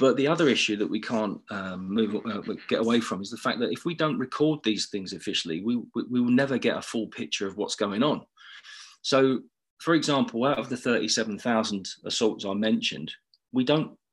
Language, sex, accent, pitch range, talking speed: English, male, British, 105-130 Hz, 205 wpm